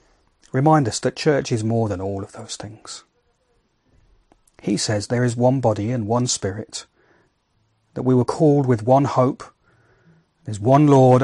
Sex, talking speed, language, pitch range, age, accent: male, 160 wpm, English, 115-150 Hz, 40-59, British